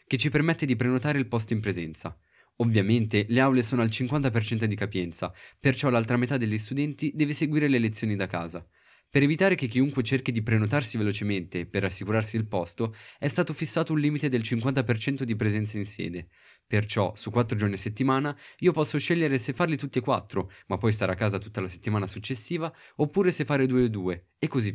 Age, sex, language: 20-39, male, Italian